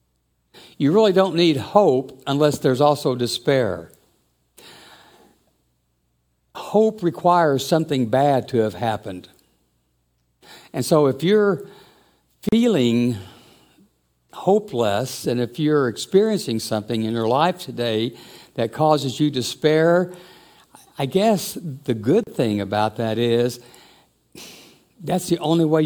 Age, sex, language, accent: 60-79, male, English, American